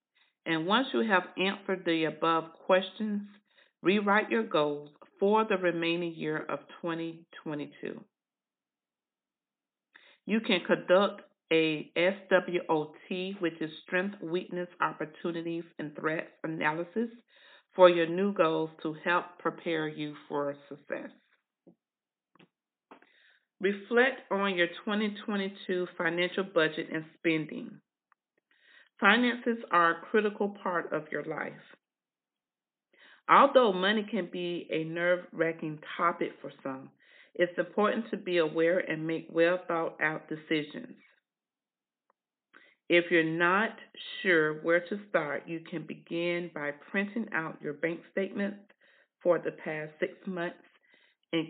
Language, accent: English, American